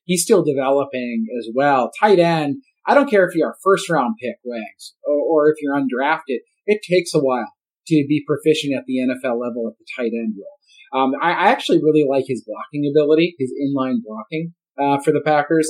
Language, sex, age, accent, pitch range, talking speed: English, male, 30-49, American, 135-170 Hz, 205 wpm